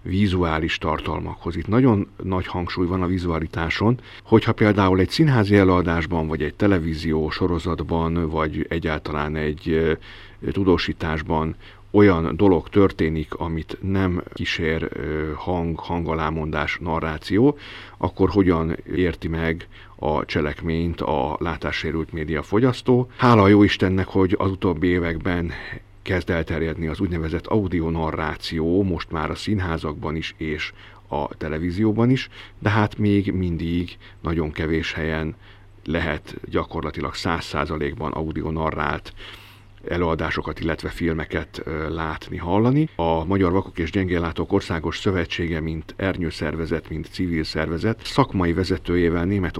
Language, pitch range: Hungarian, 80-100 Hz